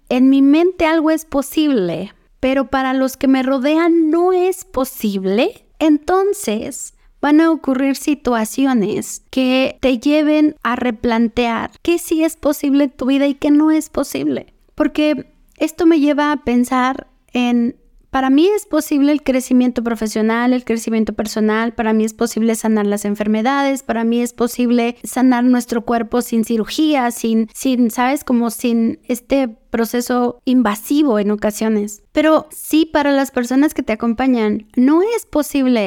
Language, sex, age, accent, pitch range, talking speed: Spanish, female, 20-39, Mexican, 235-295 Hz, 150 wpm